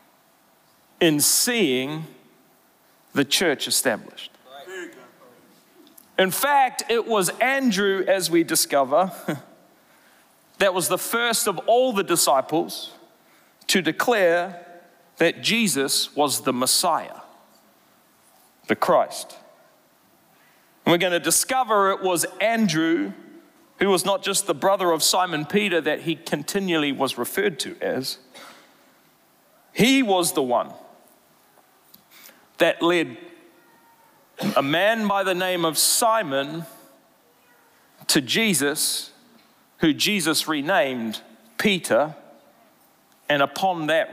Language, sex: English, male